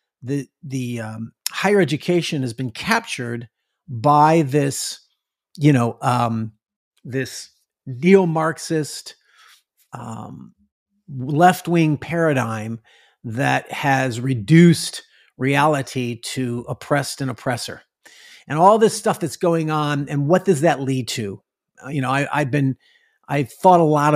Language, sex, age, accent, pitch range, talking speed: English, male, 50-69, American, 130-180 Hz, 125 wpm